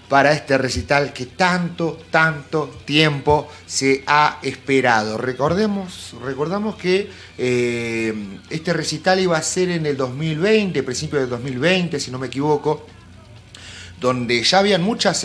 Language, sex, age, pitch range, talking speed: Spanish, male, 30-49, 115-150 Hz, 125 wpm